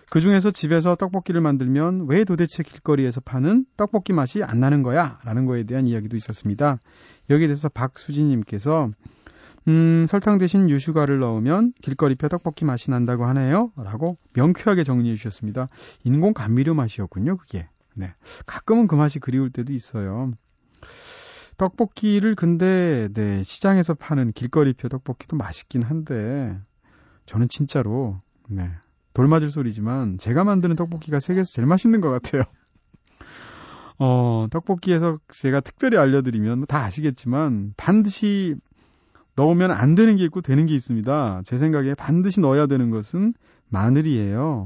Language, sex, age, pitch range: Korean, male, 30-49, 115-165 Hz